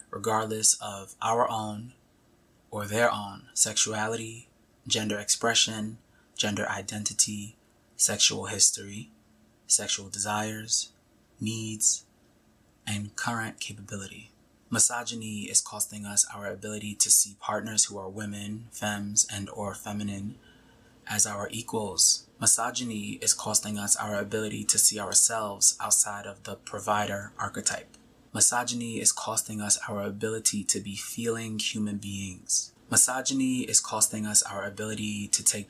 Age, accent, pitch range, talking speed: 20-39, American, 100-110 Hz, 120 wpm